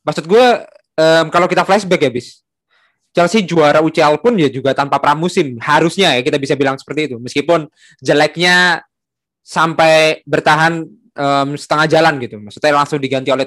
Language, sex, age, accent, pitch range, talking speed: Indonesian, male, 20-39, native, 130-155 Hz, 155 wpm